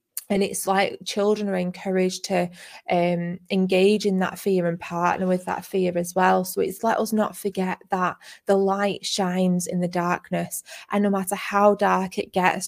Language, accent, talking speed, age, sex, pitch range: English, British, 185 wpm, 20-39, female, 175-195 Hz